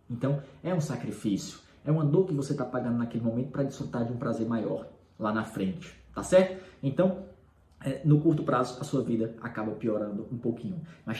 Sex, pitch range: male, 115-160 Hz